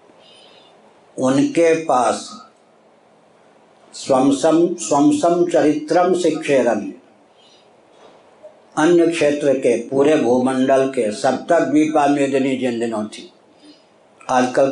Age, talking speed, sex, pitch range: 60-79, 60 wpm, male, 130-155 Hz